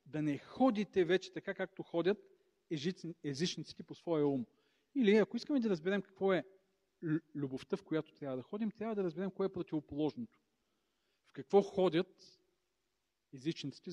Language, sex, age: Bulgarian, male, 40-59